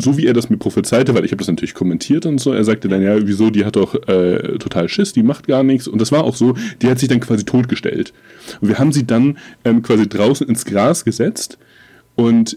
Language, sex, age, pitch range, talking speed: German, male, 30-49, 100-130 Hz, 250 wpm